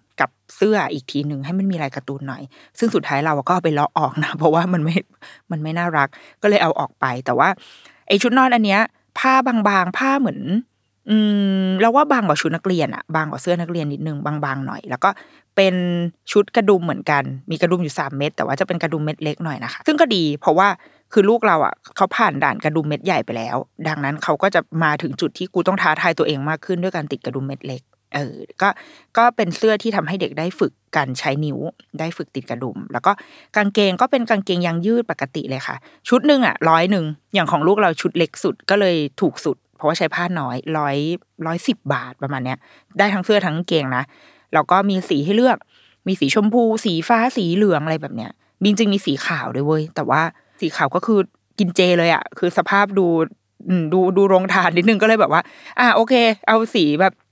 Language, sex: Thai, female